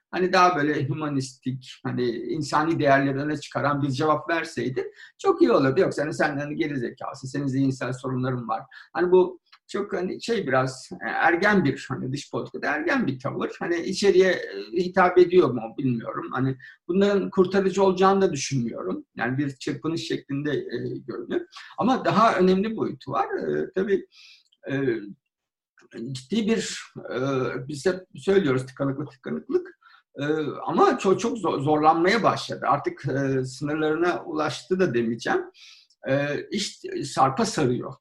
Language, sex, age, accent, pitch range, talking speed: Turkish, male, 50-69, native, 135-205 Hz, 140 wpm